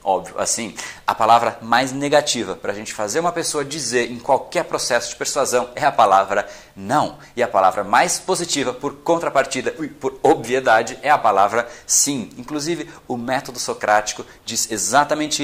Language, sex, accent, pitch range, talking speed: Portuguese, male, Brazilian, 120-155 Hz, 165 wpm